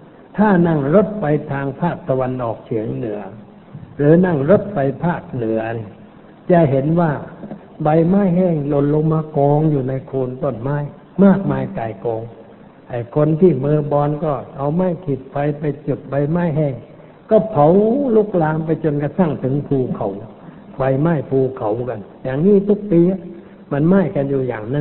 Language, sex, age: Thai, male, 60-79